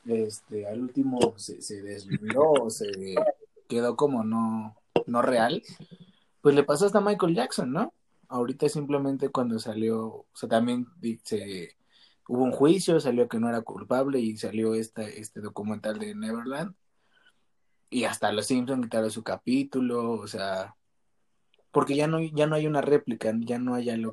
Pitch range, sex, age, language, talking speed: 110-140 Hz, male, 20-39, Spanish, 160 wpm